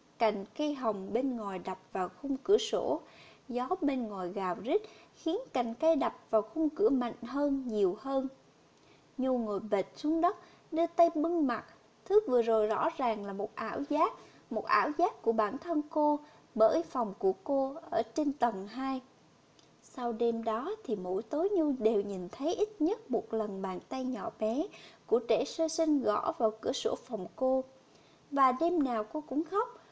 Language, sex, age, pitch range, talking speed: English, female, 20-39, 225-330 Hz, 185 wpm